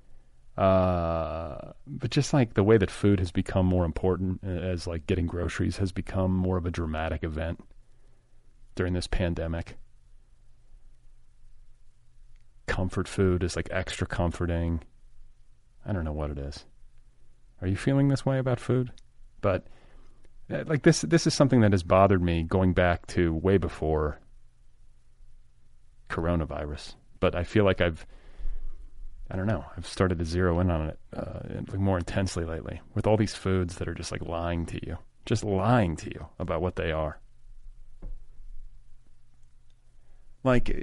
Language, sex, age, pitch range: English, male, 30-49, 80-105 Hz